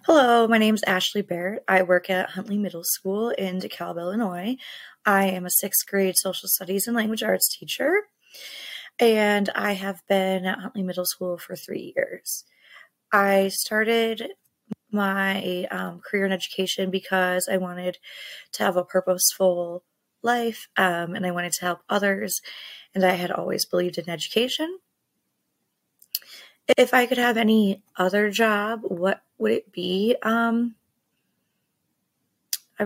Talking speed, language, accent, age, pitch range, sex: 145 wpm, English, American, 20-39, 185-220 Hz, female